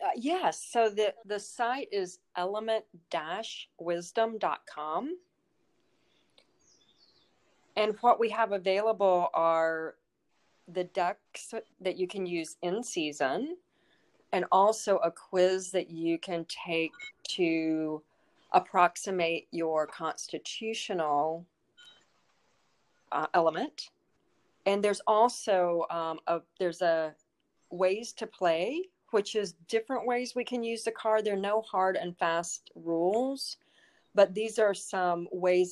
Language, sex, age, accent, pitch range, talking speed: English, female, 40-59, American, 170-220 Hz, 115 wpm